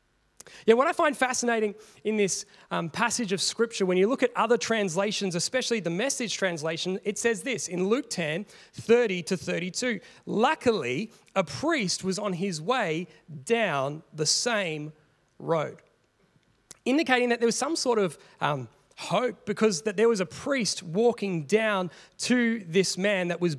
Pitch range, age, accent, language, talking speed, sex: 165-230 Hz, 30-49, Australian, English, 160 wpm, male